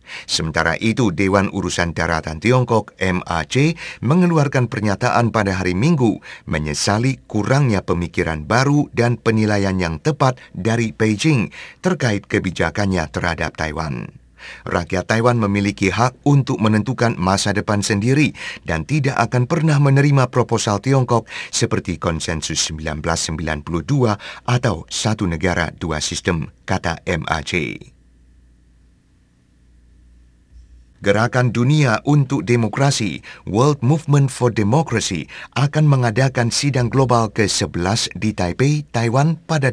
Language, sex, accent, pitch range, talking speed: English, male, Indonesian, 90-125 Hz, 105 wpm